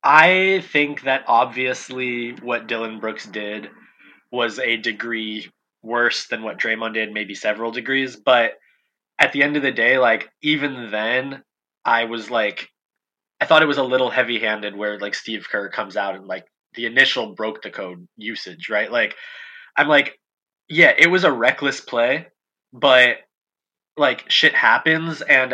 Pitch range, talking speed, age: 110-140 Hz, 155 wpm, 20-39